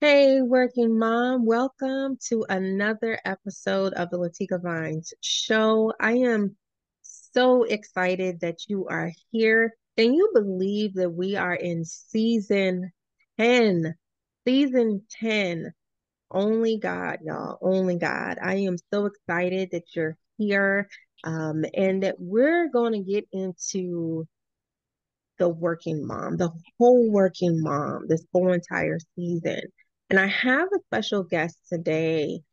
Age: 20-39